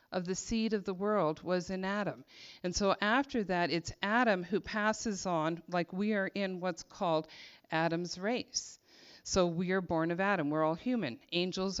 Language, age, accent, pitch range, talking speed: English, 50-69, American, 160-200 Hz, 185 wpm